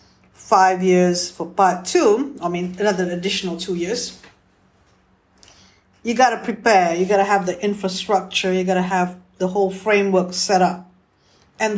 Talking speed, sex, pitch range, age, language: 160 wpm, female, 165-205 Hz, 50-69, English